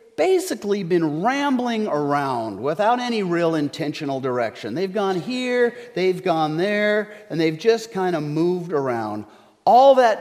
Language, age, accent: English, 40-59, American